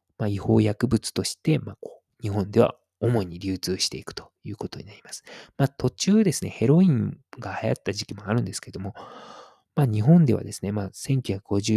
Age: 20-39